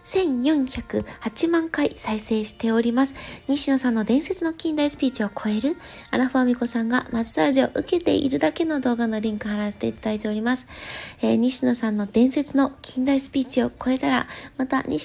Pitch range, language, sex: 230-290 Hz, Japanese, female